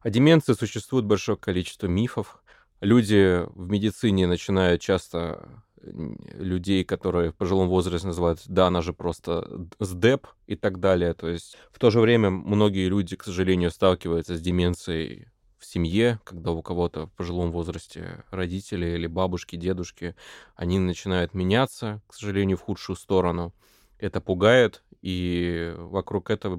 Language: Russian